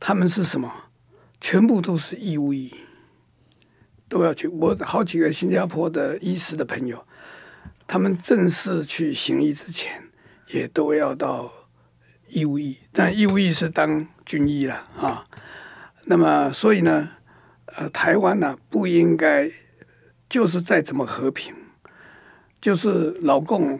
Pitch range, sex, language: 140-185 Hz, male, Chinese